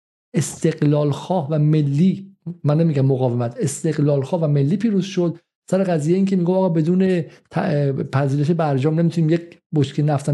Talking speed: 145 wpm